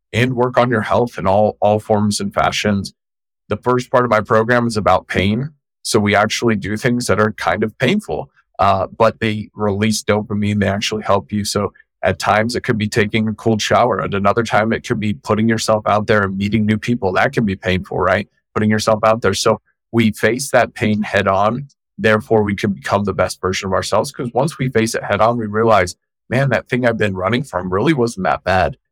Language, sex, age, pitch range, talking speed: English, male, 30-49, 100-115 Hz, 225 wpm